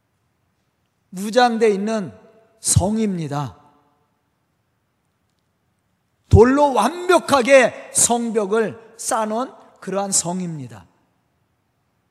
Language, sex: Korean, male